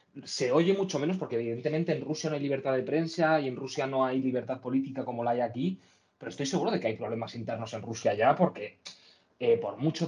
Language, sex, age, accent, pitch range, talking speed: Spanish, male, 20-39, Spanish, 125-145 Hz, 230 wpm